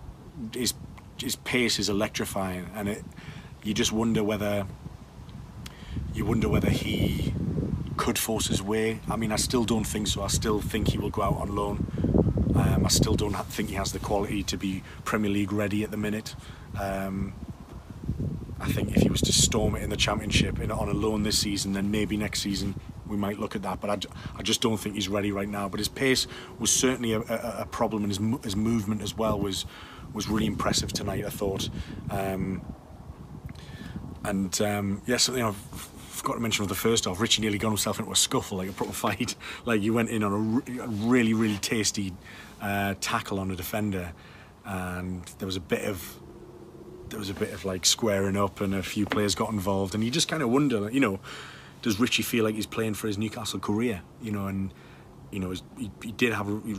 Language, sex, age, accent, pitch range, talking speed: English, male, 30-49, British, 100-110 Hz, 210 wpm